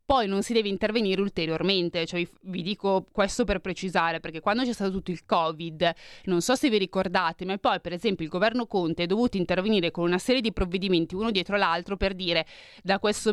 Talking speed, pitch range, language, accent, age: 205 wpm, 180-220 Hz, Italian, native, 30-49